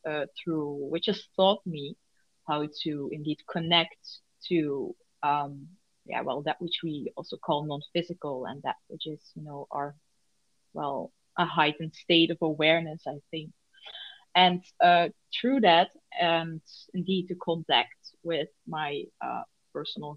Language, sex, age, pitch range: English, female, 30-49, 160-200 Hz